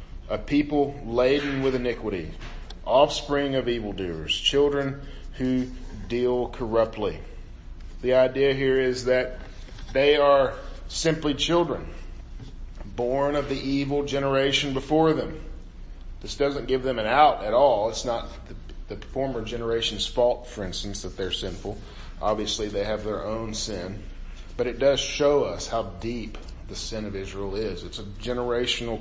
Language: English